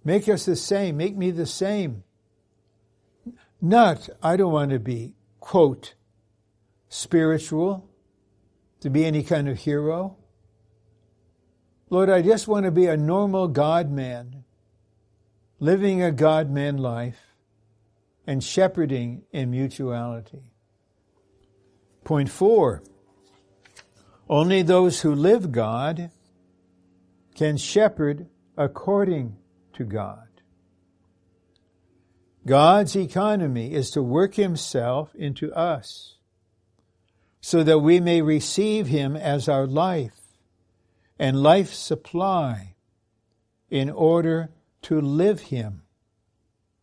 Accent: American